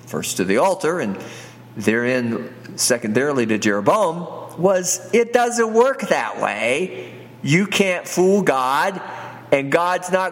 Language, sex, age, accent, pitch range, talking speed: English, male, 50-69, American, 120-170 Hz, 130 wpm